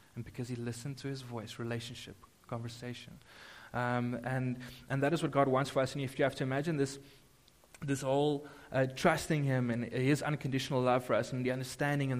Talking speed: 200 wpm